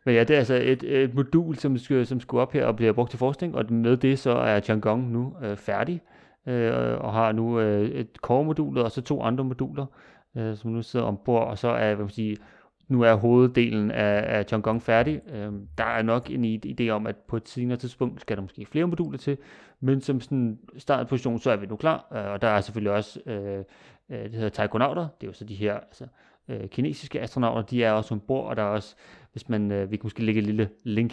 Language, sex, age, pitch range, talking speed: Danish, male, 30-49, 105-125 Hz, 235 wpm